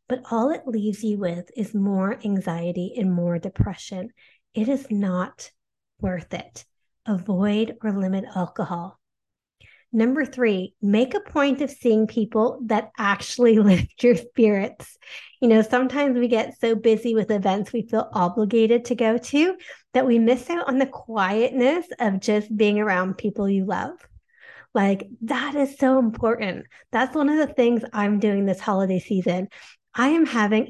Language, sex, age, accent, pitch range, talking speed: English, female, 30-49, American, 195-245 Hz, 160 wpm